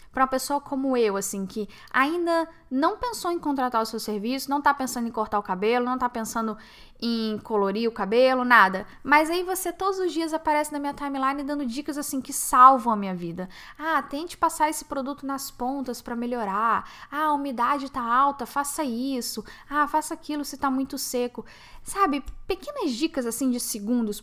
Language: Portuguese